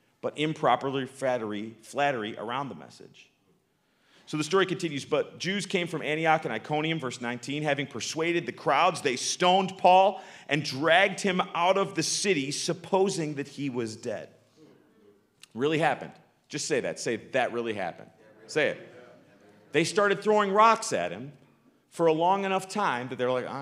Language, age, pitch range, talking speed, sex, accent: English, 40-59, 125-170 Hz, 170 wpm, male, American